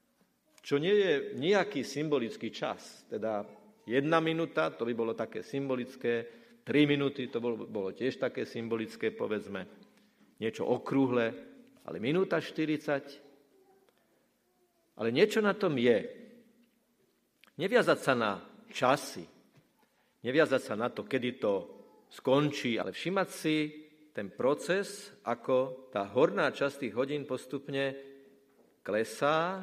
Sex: male